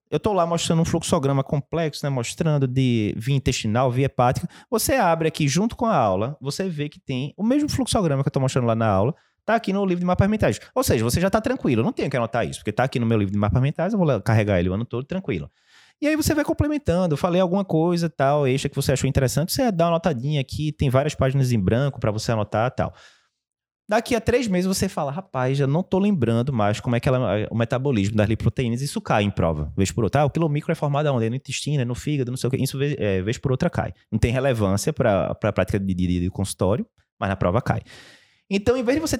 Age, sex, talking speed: 20-39, male, 265 wpm